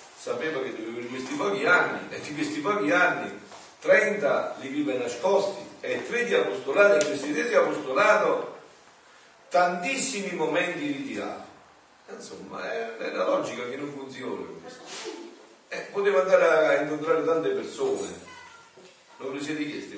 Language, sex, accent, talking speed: Italian, male, native, 145 wpm